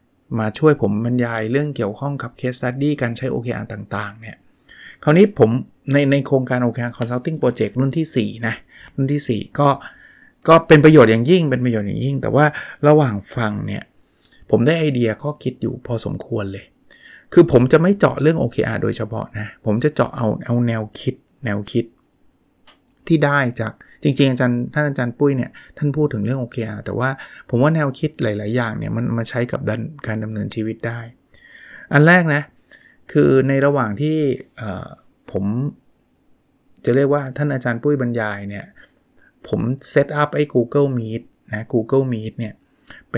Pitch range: 110-140 Hz